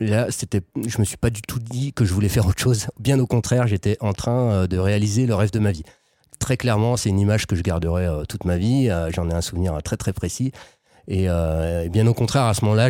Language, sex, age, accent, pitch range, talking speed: French, male, 30-49, French, 90-115 Hz, 250 wpm